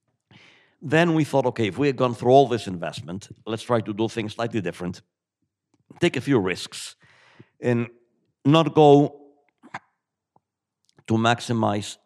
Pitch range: 100-125 Hz